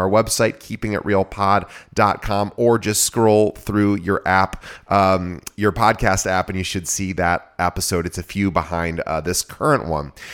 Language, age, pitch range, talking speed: English, 30-49, 95-120 Hz, 155 wpm